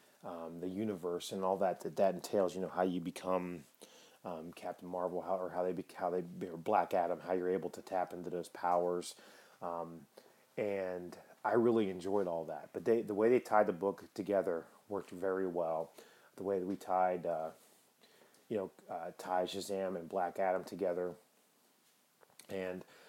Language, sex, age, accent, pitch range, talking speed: English, male, 30-49, American, 90-100 Hz, 175 wpm